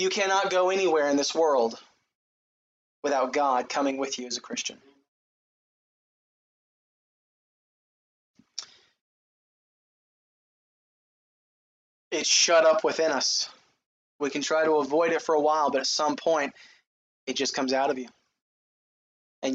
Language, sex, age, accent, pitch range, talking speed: English, male, 20-39, American, 150-210 Hz, 125 wpm